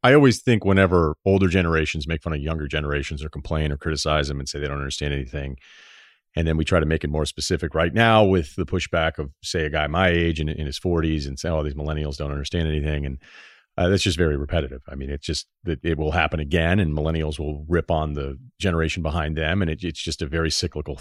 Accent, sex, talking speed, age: American, male, 240 wpm, 40-59